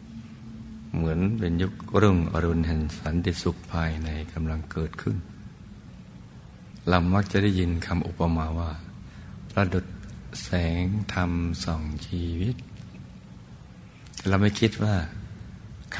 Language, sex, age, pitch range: Thai, male, 60-79, 80-95 Hz